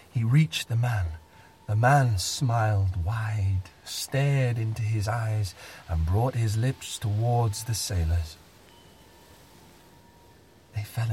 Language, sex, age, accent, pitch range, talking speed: English, male, 30-49, British, 85-115 Hz, 115 wpm